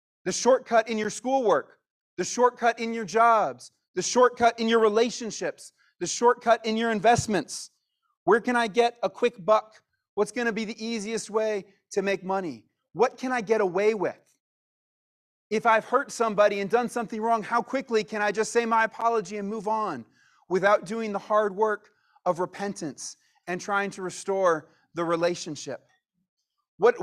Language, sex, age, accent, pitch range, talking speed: English, male, 30-49, American, 200-245 Hz, 170 wpm